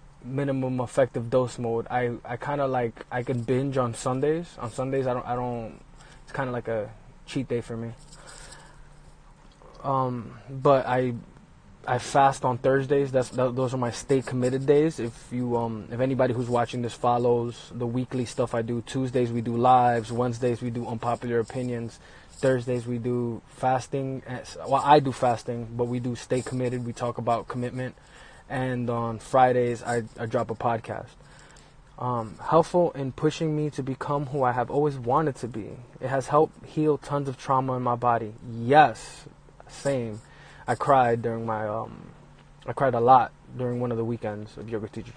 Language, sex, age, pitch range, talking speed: English, male, 20-39, 120-135 Hz, 175 wpm